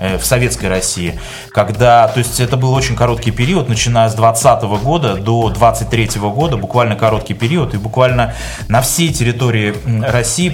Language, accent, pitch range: Russian, native, 115-150 Hz